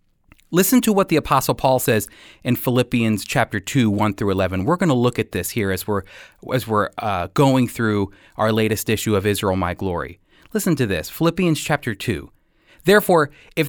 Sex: male